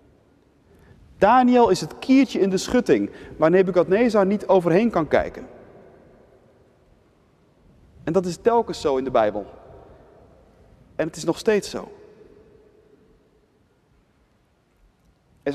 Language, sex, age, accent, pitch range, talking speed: Dutch, male, 40-59, Dutch, 140-190 Hz, 110 wpm